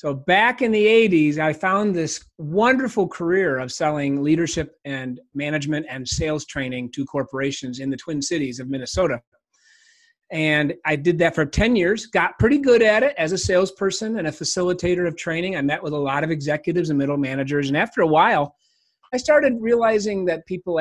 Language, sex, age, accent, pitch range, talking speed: English, male, 30-49, American, 150-210 Hz, 185 wpm